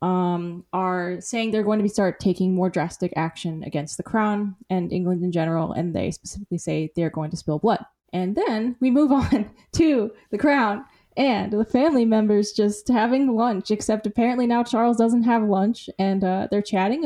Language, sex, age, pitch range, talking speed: English, female, 10-29, 190-245 Hz, 190 wpm